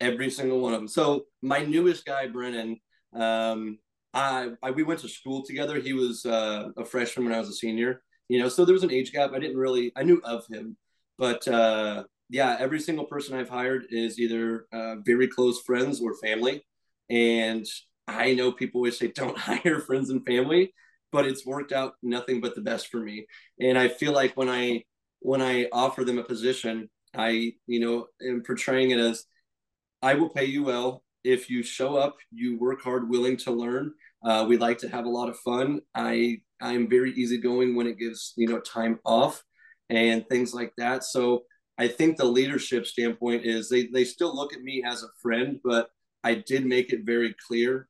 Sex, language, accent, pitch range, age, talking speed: male, English, American, 115-130 Hz, 30-49, 200 wpm